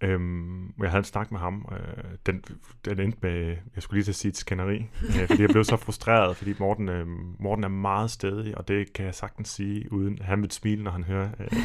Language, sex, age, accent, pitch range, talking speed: Danish, male, 30-49, native, 95-105 Hz, 245 wpm